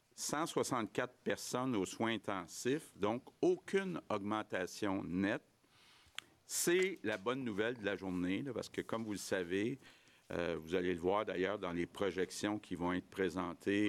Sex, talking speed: male, 155 wpm